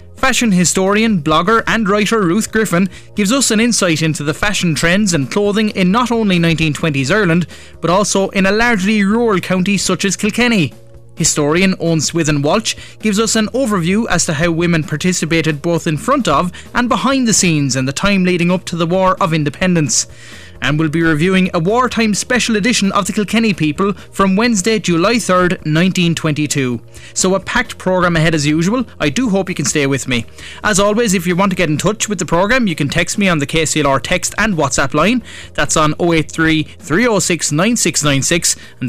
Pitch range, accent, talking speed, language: 150-205 Hz, Irish, 190 wpm, English